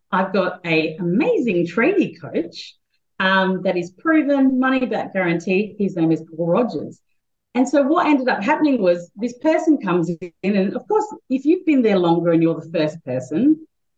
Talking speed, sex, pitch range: 175 wpm, female, 165-240 Hz